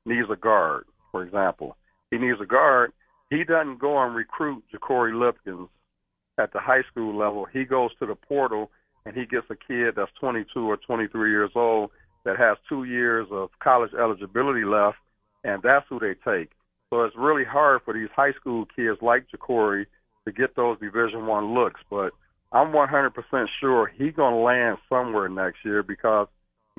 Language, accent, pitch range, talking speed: English, American, 105-120 Hz, 180 wpm